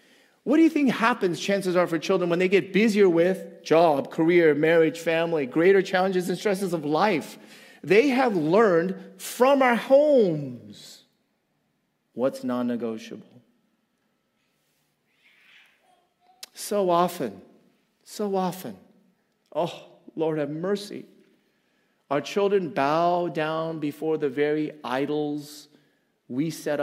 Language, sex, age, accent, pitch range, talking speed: English, male, 40-59, American, 150-215 Hz, 110 wpm